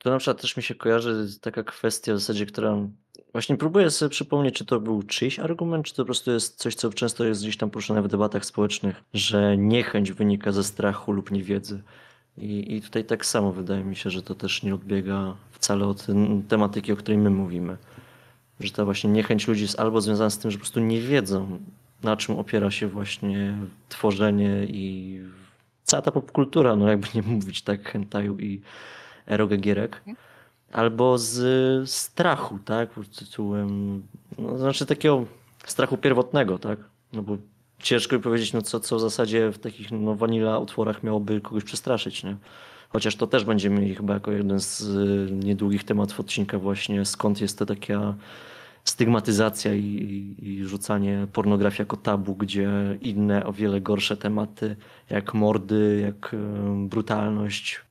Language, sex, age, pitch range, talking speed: Polish, male, 20-39, 100-115 Hz, 170 wpm